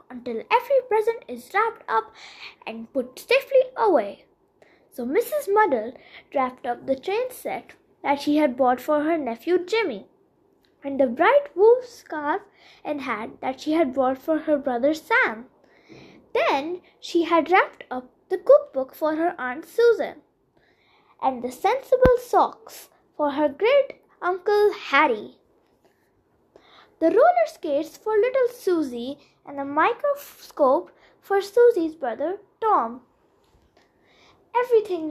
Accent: Indian